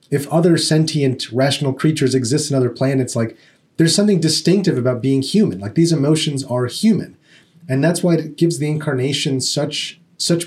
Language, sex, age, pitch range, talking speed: English, male, 30-49, 130-165 Hz, 170 wpm